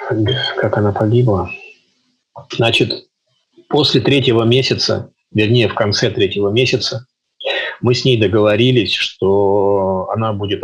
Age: 30-49